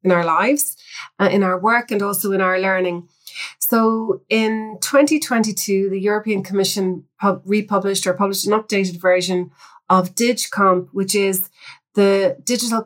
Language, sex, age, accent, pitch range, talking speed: English, female, 30-49, Irish, 190-215 Hz, 140 wpm